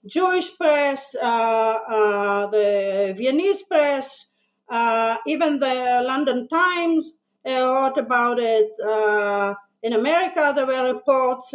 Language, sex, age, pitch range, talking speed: English, female, 50-69, 220-285 Hz, 115 wpm